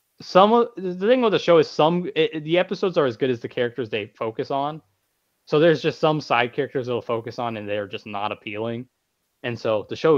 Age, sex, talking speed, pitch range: 20-39, male, 235 wpm, 115-150 Hz